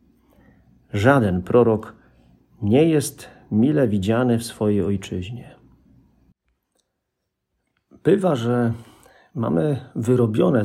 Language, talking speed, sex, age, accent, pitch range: Polish, 75 wpm, male, 40-59, native, 100-120 Hz